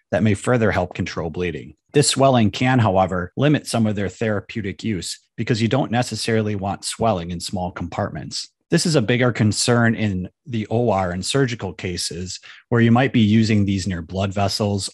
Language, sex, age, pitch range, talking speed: English, male, 30-49, 95-120 Hz, 180 wpm